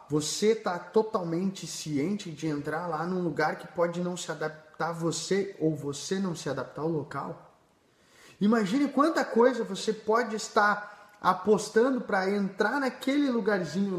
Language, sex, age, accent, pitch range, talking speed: Portuguese, male, 20-39, Brazilian, 165-220 Hz, 145 wpm